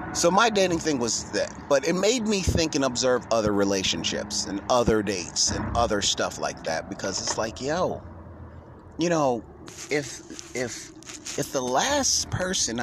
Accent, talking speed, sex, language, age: American, 165 wpm, male, English, 30-49